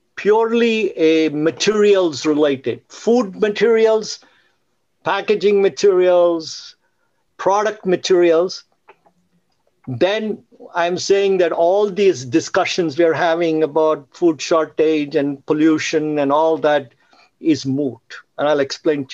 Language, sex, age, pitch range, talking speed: English, male, 50-69, 155-215 Hz, 105 wpm